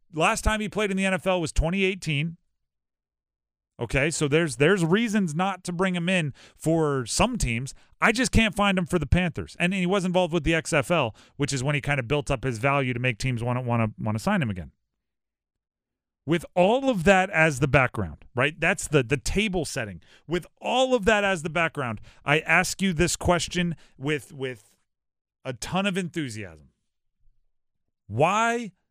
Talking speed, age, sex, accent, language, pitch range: 190 wpm, 40-59, male, American, English, 140-195 Hz